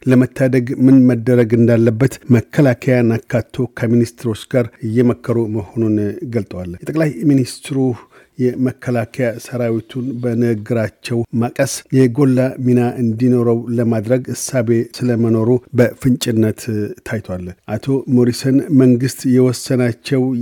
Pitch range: 115-130 Hz